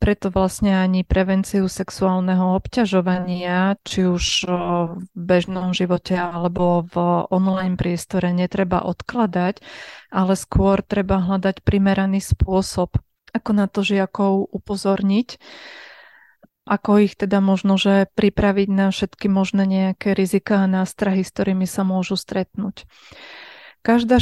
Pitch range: 185-200 Hz